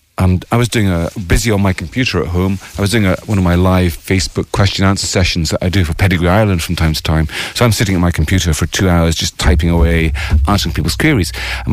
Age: 40-59